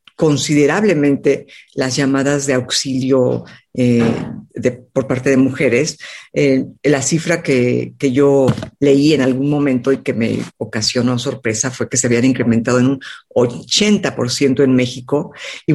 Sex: female